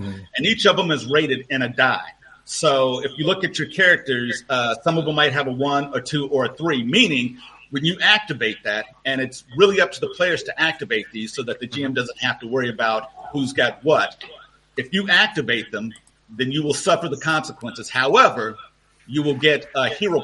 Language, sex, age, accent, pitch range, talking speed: English, male, 50-69, American, 130-155 Hz, 215 wpm